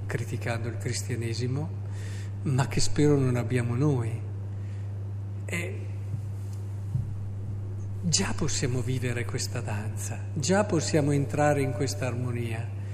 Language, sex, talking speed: Italian, male, 95 wpm